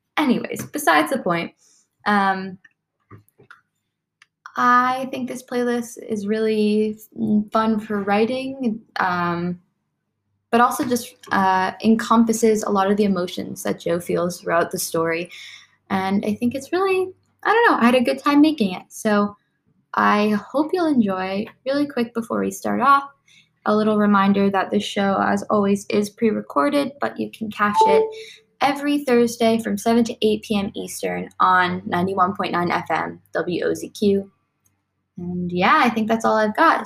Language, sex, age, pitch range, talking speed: English, female, 10-29, 180-235 Hz, 150 wpm